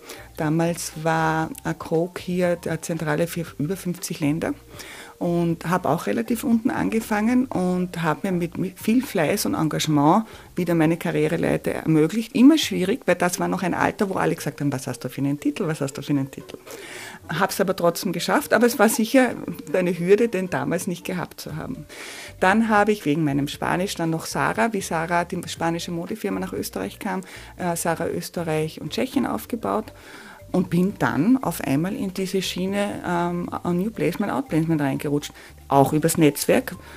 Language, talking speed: German, 175 wpm